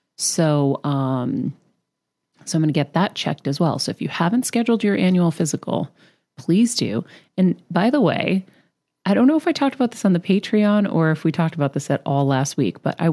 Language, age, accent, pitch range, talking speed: English, 30-49, American, 145-190 Hz, 220 wpm